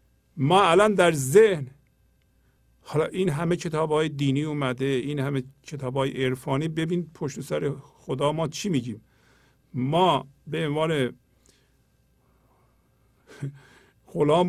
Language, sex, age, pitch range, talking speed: Persian, male, 50-69, 135-185 Hz, 110 wpm